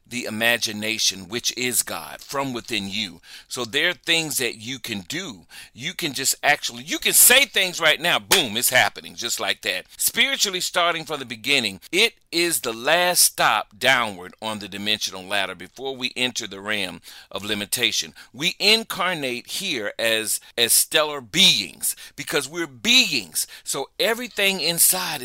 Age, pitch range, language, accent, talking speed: 40-59, 125-185 Hz, English, American, 160 wpm